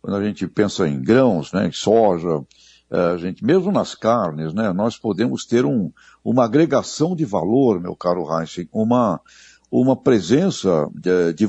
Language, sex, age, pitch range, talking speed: Portuguese, male, 60-79, 100-150 Hz, 140 wpm